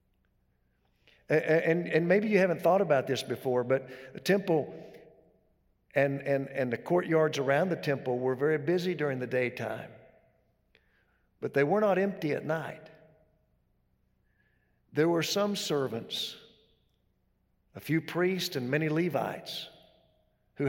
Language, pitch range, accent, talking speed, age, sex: English, 130-170 Hz, American, 130 wpm, 50-69, male